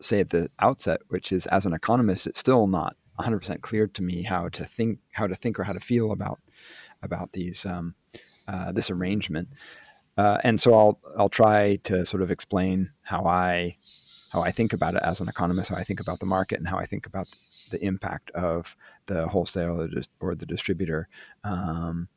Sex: male